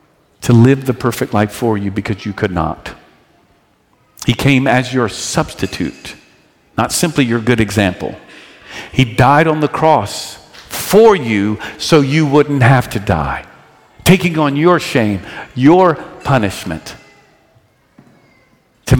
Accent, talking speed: American, 130 wpm